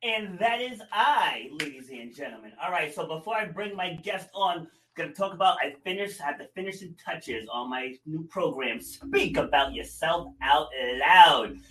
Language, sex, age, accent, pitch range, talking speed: English, male, 30-49, American, 140-190 Hz, 185 wpm